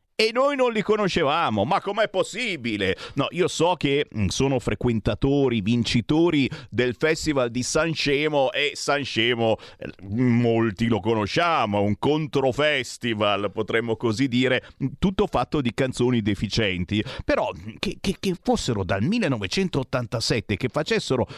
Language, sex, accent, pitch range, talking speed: Italian, male, native, 115-170 Hz, 130 wpm